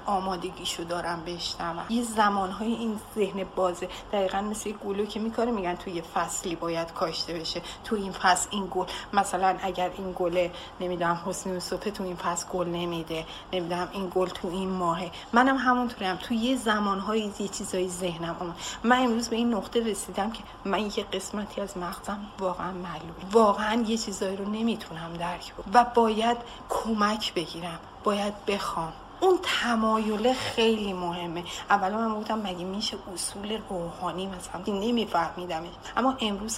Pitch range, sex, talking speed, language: 180-220 Hz, female, 170 wpm, Persian